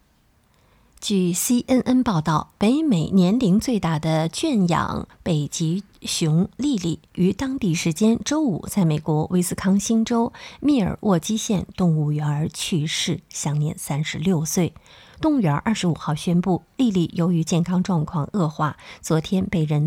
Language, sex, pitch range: Chinese, female, 160-220 Hz